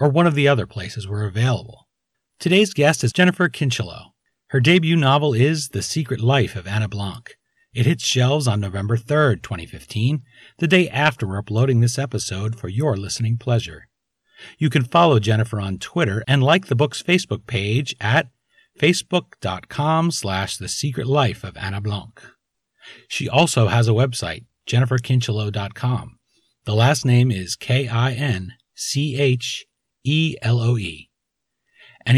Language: English